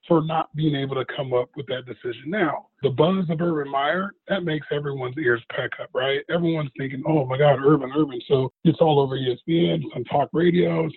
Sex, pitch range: male, 145-180 Hz